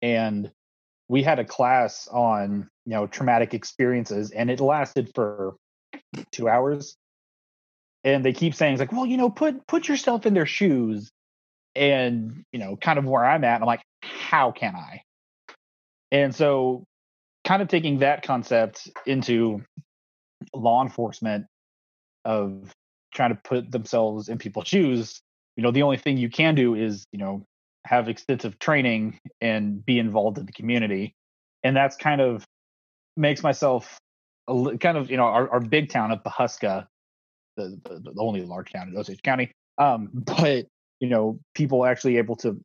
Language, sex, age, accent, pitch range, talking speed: English, male, 30-49, American, 105-140 Hz, 160 wpm